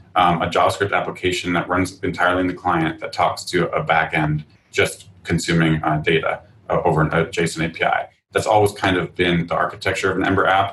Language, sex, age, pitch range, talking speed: English, male, 30-49, 85-95 Hz, 190 wpm